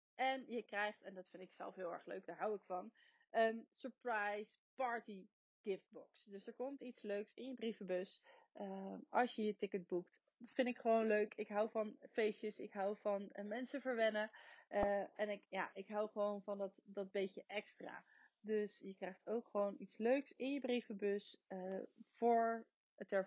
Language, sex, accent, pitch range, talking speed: Dutch, female, Dutch, 200-250 Hz, 190 wpm